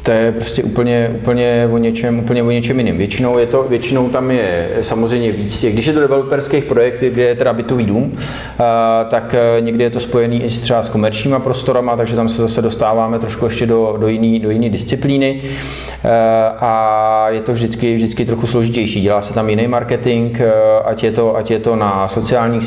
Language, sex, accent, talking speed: Czech, male, native, 190 wpm